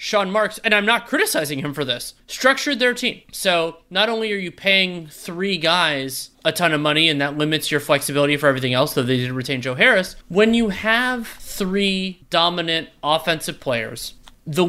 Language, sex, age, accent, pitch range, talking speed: English, male, 30-49, American, 145-205 Hz, 190 wpm